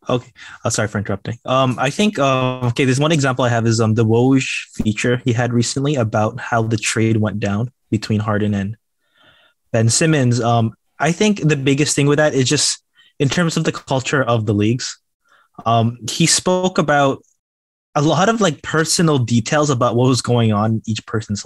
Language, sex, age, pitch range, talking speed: English, male, 20-39, 115-145 Hz, 200 wpm